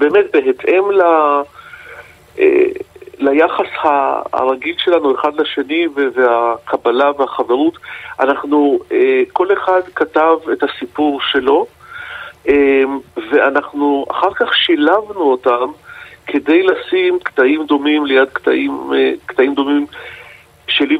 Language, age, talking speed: Hebrew, 50-69, 90 wpm